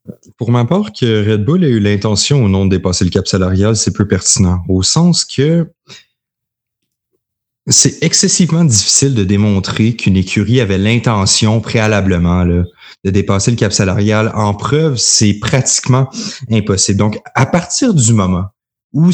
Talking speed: 155 wpm